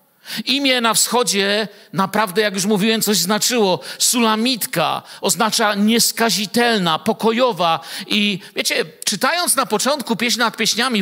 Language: Polish